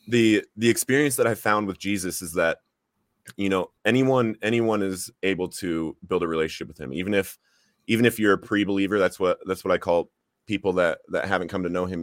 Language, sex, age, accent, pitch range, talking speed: English, male, 30-49, American, 90-105 Hz, 215 wpm